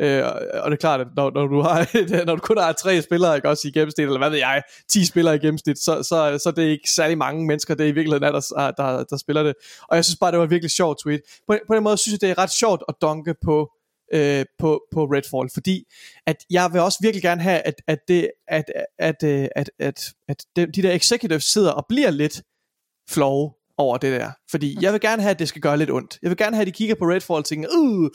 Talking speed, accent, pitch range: 260 wpm, native, 150-185 Hz